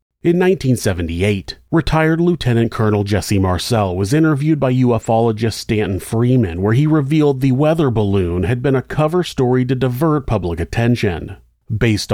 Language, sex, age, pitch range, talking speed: English, male, 30-49, 105-140 Hz, 145 wpm